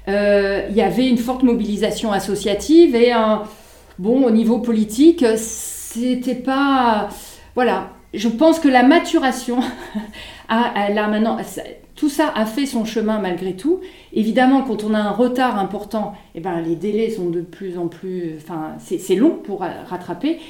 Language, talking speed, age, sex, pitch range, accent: French, 165 wpm, 40-59, female, 205-250 Hz, French